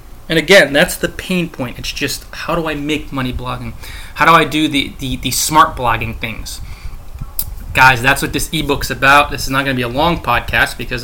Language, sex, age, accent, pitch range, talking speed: English, male, 20-39, American, 125-160 Hz, 220 wpm